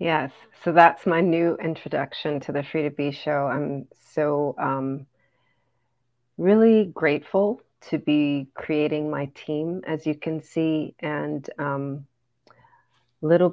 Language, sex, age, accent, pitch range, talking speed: English, female, 40-59, American, 140-165 Hz, 130 wpm